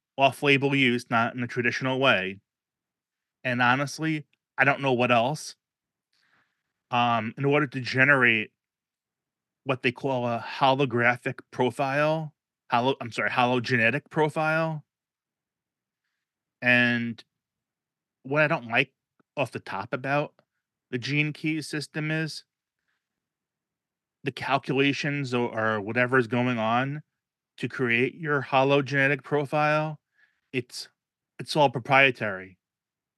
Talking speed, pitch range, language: 110 wpm, 120-145 Hz, English